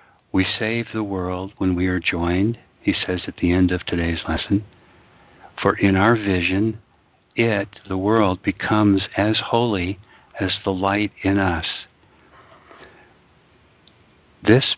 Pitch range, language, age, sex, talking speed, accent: 95-110 Hz, English, 60-79, male, 130 wpm, American